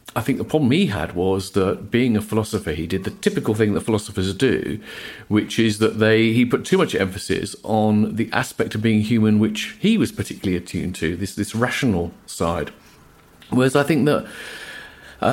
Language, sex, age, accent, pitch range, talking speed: English, male, 40-59, British, 100-125 Hz, 190 wpm